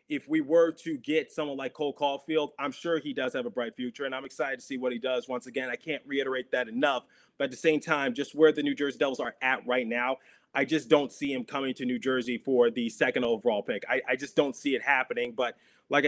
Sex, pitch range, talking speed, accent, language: male, 130-155 Hz, 260 wpm, American, English